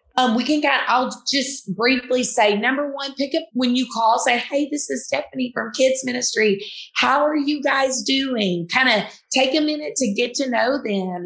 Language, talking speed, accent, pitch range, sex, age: English, 210 wpm, American, 205-255 Hz, female, 30-49